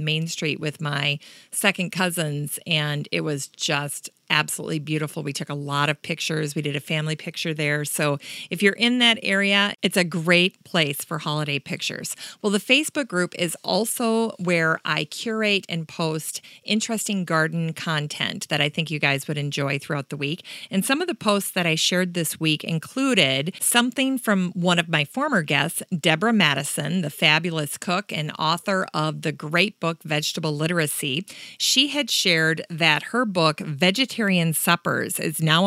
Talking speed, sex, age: 175 wpm, female, 40-59